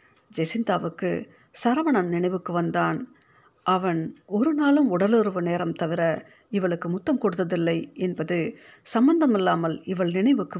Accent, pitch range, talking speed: native, 170-215 Hz, 95 wpm